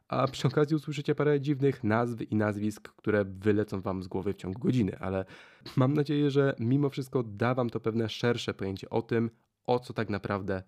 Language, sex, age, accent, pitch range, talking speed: Polish, male, 20-39, native, 105-140 Hz, 195 wpm